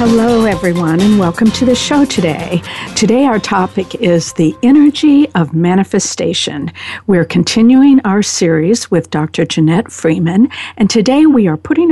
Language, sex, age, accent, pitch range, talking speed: English, female, 60-79, American, 165-240 Hz, 145 wpm